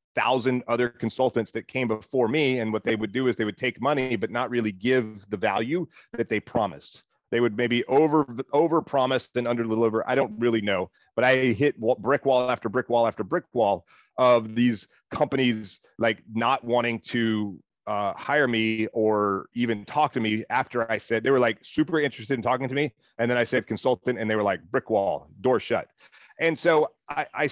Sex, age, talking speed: male, 30-49, 205 wpm